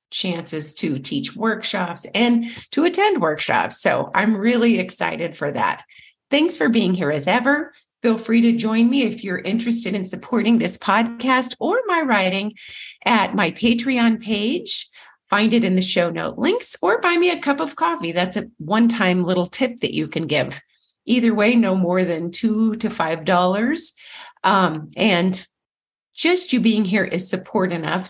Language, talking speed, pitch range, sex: English, 170 wpm, 185-245 Hz, female